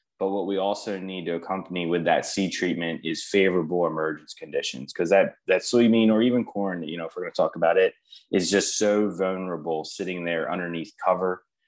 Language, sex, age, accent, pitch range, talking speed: English, male, 20-39, American, 85-105 Hz, 200 wpm